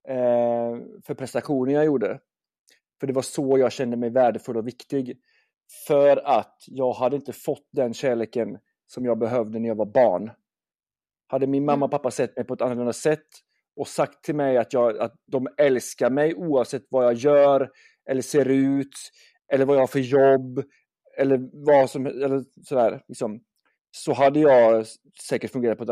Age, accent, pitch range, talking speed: 30-49, native, 120-145 Hz, 175 wpm